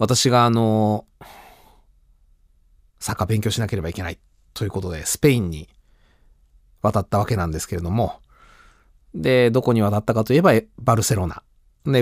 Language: Japanese